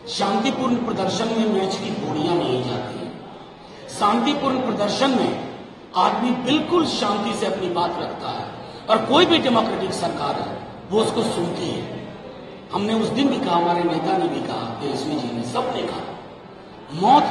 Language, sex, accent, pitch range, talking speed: Hindi, male, native, 200-275 Hz, 155 wpm